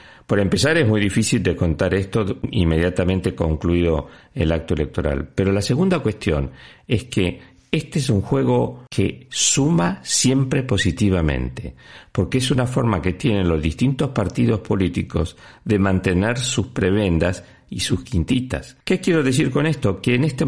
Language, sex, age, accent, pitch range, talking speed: Spanish, male, 50-69, Argentinian, 85-120 Hz, 150 wpm